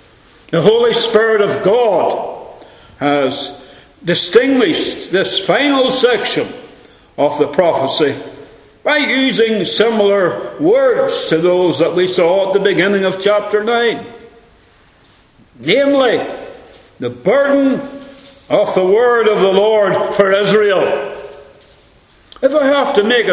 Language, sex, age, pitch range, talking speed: English, male, 60-79, 165-235 Hz, 115 wpm